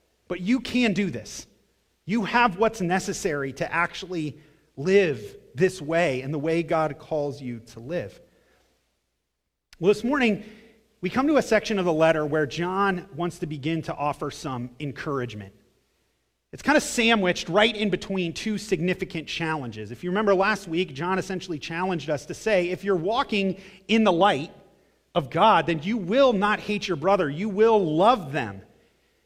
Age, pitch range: 30-49, 160-210 Hz